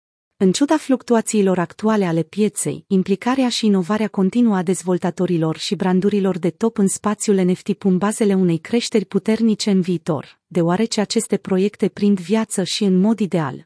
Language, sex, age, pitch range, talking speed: Romanian, female, 30-49, 180-220 Hz, 155 wpm